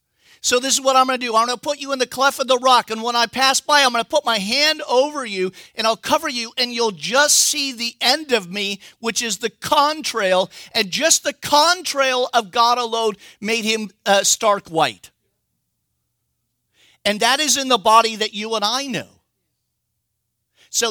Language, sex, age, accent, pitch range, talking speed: English, male, 50-69, American, 180-260 Hz, 205 wpm